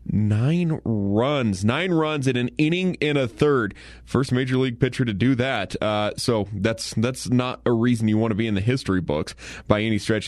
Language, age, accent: English, 30-49, American